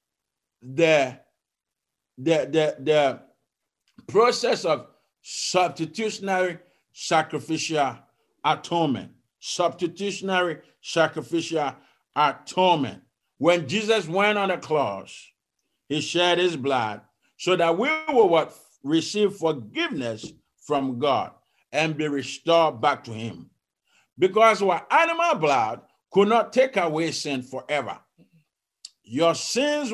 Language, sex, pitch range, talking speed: English, male, 155-225 Hz, 95 wpm